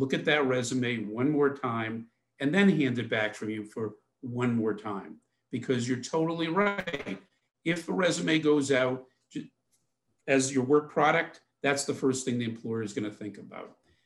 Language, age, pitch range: English, 50-69, 125-150 Hz